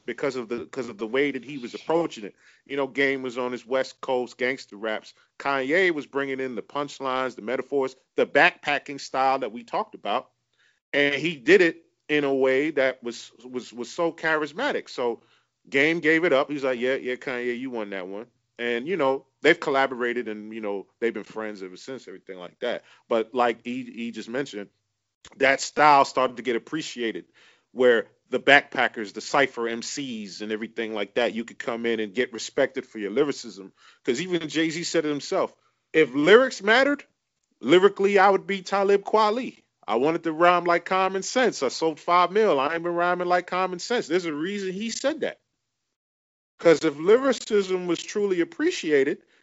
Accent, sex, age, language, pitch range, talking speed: American, male, 40-59, English, 125-185 Hz, 190 wpm